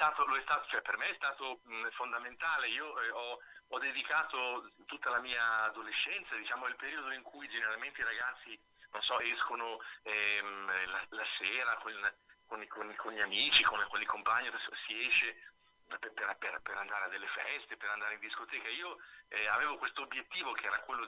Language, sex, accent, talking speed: Italian, male, native, 190 wpm